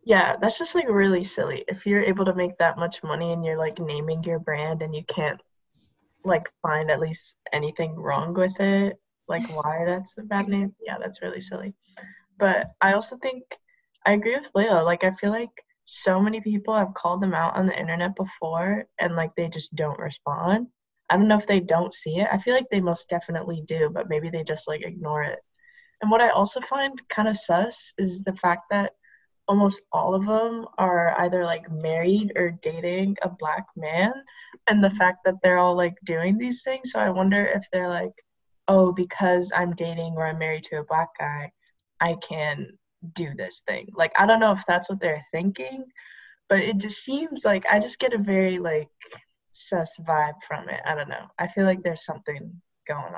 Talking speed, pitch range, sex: 205 wpm, 165-205 Hz, female